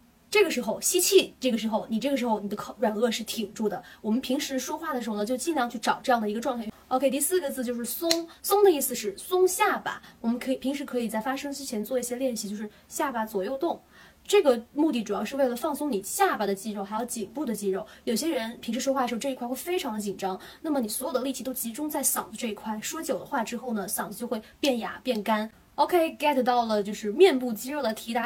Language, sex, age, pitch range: Chinese, female, 20-39, 220-295 Hz